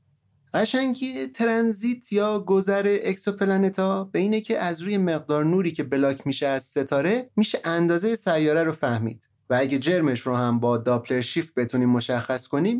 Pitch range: 125-195 Hz